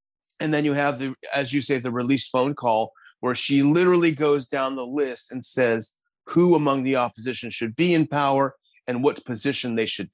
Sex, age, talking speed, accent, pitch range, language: male, 30-49, 200 wpm, American, 130-160 Hz, English